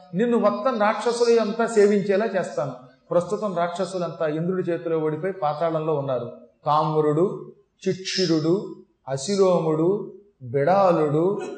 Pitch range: 145-200 Hz